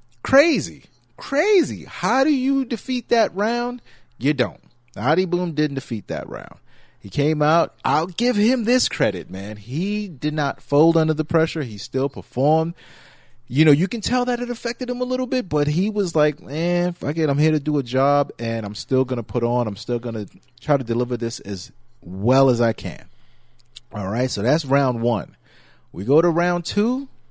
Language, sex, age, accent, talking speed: English, male, 30-49, American, 195 wpm